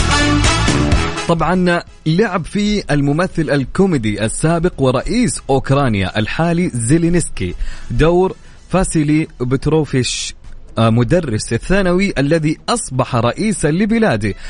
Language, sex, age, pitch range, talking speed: Arabic, male, 30-49, 110-175 Hz, 80 wpm